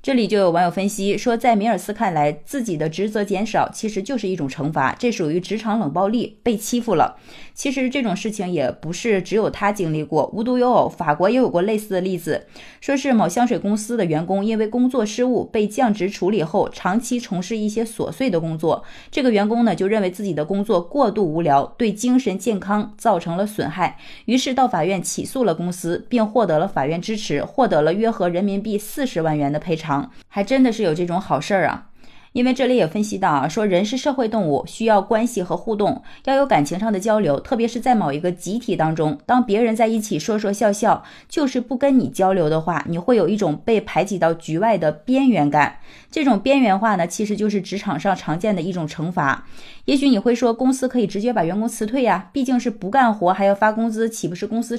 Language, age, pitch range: Chinese, 20-39, 180-240 Hz